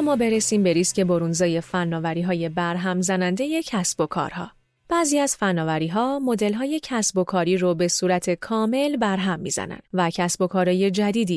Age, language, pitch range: 30-49, Persian, 175-250 Hz